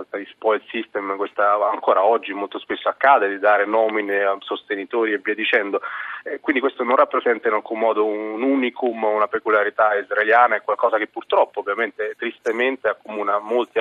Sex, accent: male, native